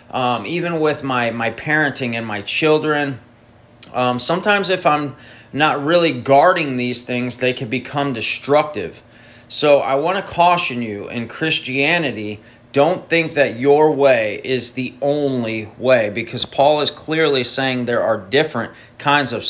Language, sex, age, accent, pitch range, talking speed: English, male, 30-49, American, 120-155 Hz, 150 wpm